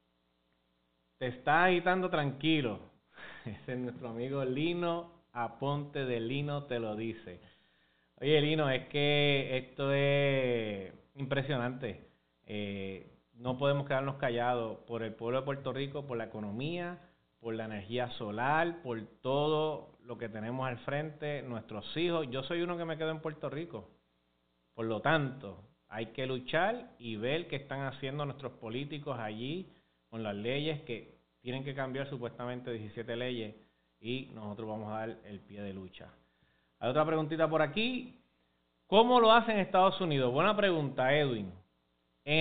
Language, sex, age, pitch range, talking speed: Spanish, male, 30-49, 115-165 Hz, 150 wpm